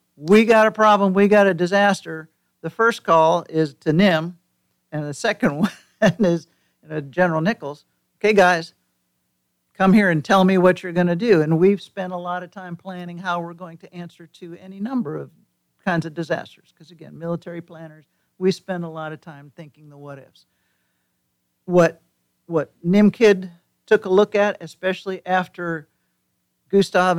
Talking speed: 170 wpm